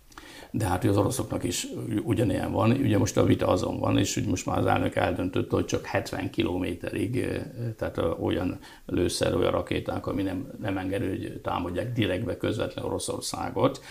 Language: Hungarian